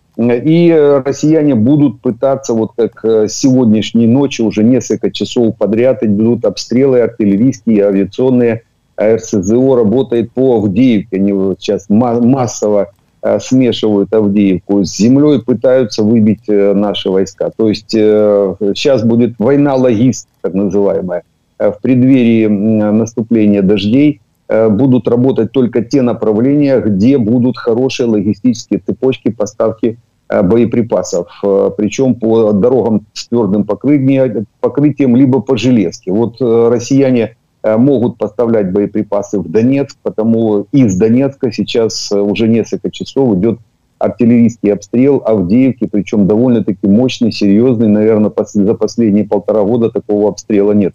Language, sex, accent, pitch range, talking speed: Ukrainian, male, native, 105-125 Hz, 110 wpm